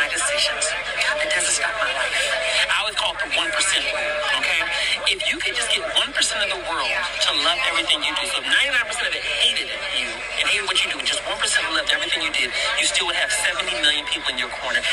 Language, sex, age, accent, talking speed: English, male, 40-59, American, 235 wpm